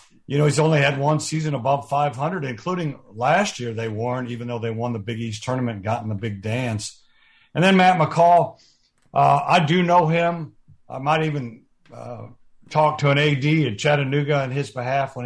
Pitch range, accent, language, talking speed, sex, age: 125-155 Hz, American, English, 200 wpm, male, 50-69